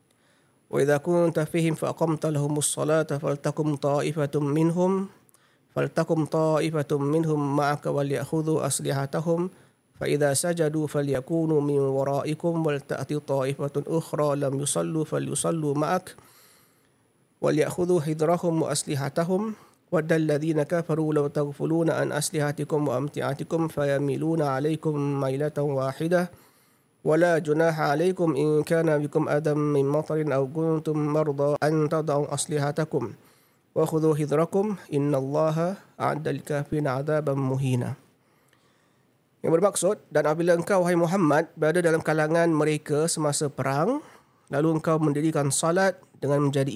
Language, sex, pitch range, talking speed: Malay, male, 140-165 Hz, 105 wpm